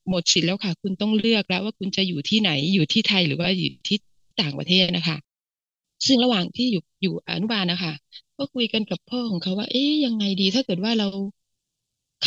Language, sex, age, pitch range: Thai, female, 20-39, 180-225 Hz